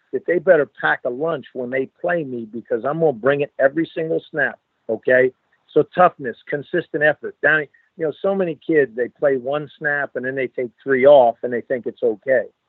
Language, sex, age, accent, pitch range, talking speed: English, male, 50-69, American, 120-150 Hz, 215 wpm